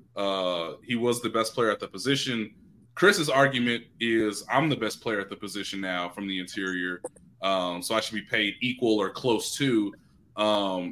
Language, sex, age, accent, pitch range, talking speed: English, male, 20-39, American, 105-130 Hz, 185 wpm